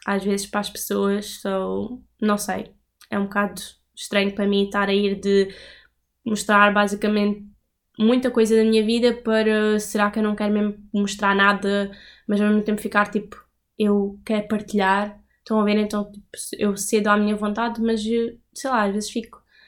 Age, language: 10-29, Portuguese